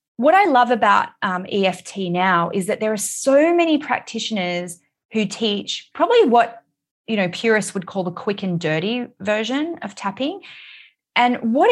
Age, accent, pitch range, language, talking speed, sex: 20-39, Australian, 185-245 Hz, English, 165 wpm, female